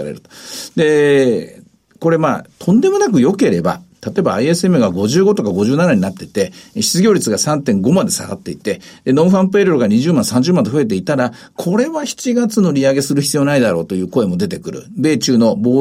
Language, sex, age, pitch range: Japanese, male, 50-69, 135-195 Hz